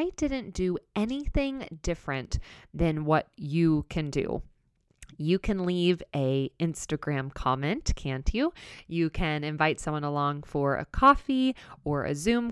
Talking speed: 140 wpm